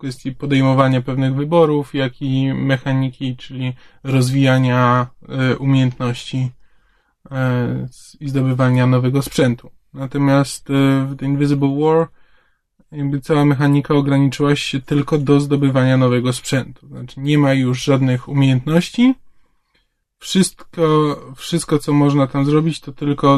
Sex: male